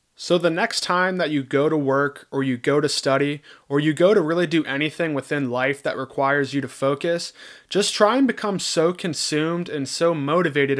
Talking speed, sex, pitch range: 205 wpm, male, 140-165 Hz